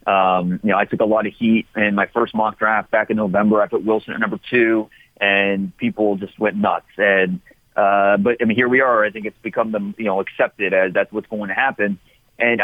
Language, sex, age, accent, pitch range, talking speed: English, male, 30-49, American, 105-125 Hz, 240 wpm